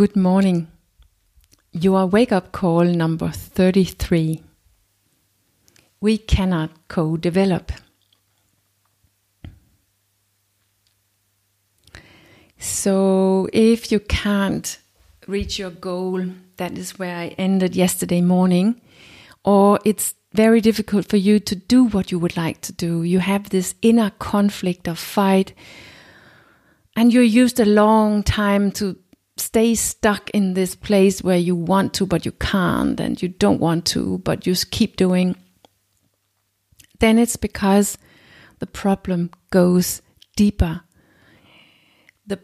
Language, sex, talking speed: English, female, 115 wpm